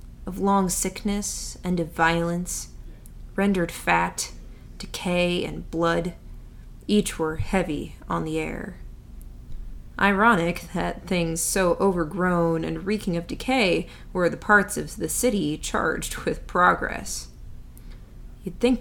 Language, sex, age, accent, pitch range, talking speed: English, female, 20-39, American, 165-200 Hz, 120 wpm